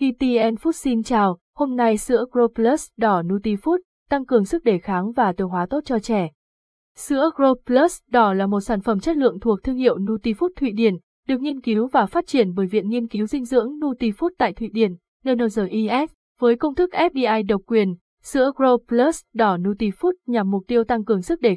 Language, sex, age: Vietnamese, female, 20-39